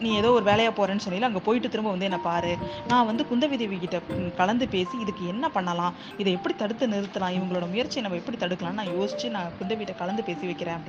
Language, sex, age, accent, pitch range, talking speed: Tamil, female, 20-39, native, 175-225 Hz, 205 wpm